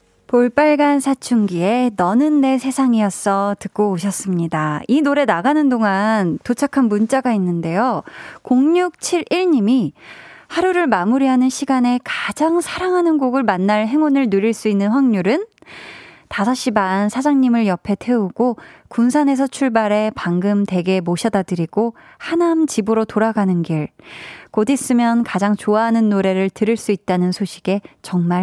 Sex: female